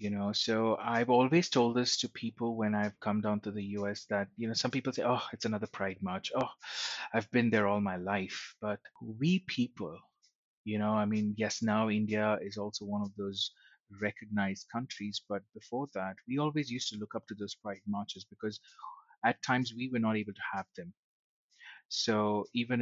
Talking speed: 200 wpm